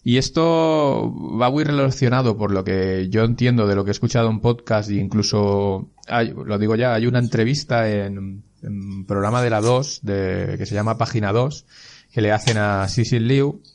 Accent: Spanish